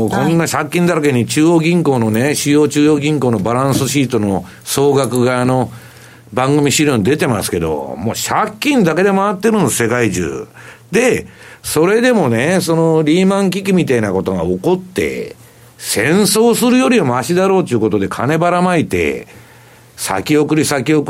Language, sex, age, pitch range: Japanese, male, 60-79, 130-180 Hz